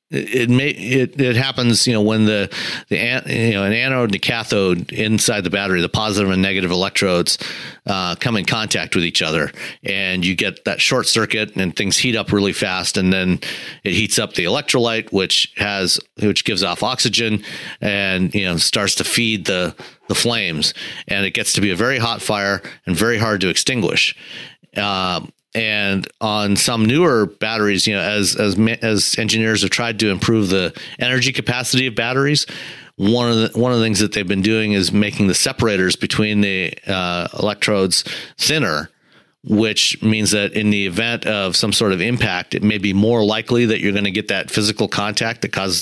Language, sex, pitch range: English, male, 100-115 Hz